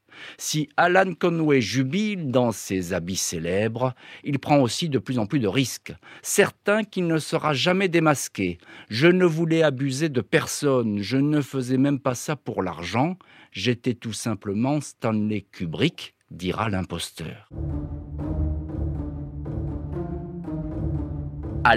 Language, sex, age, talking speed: French, male, 50-69, 125 wpm